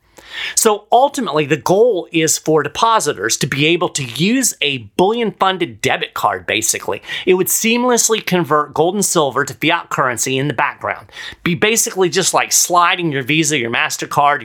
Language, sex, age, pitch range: English, male, 40-59, 150-210 Hz